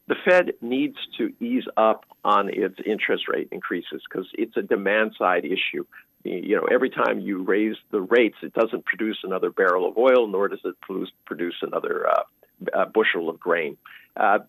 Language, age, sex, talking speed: English, 50-69, male, 170 wpm